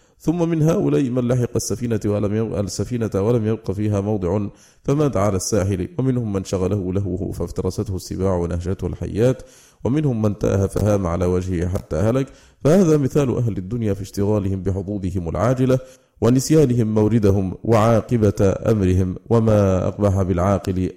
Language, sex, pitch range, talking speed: Arabic, male, 95-115 Hz, 135 wpm